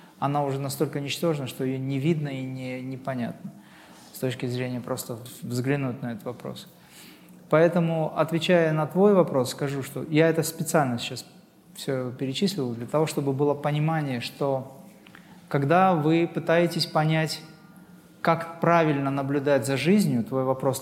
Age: 20-39